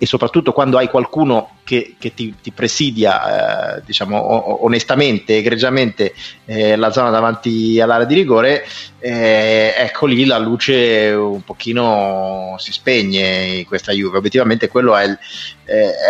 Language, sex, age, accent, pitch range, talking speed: Italian, male, 30-49, native, 100-120 Hz, 140 wpm